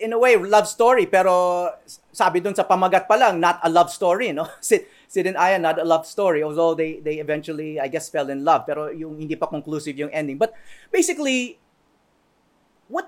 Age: 30-49